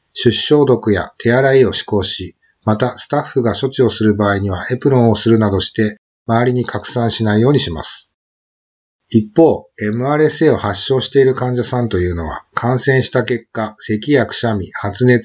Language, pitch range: Japanese, 105-125 Hz